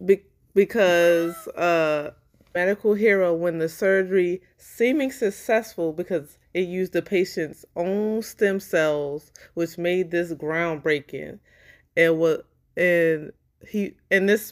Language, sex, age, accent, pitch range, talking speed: English, female, 20-39, American, 150-190 Hz, 110 wpm